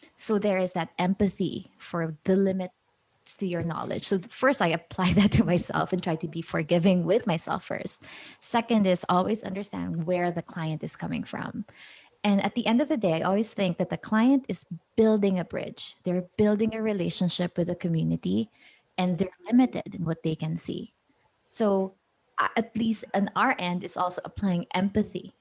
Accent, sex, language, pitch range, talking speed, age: Filipino, female, English, 175-215 Hz, 185 wpm, 20-39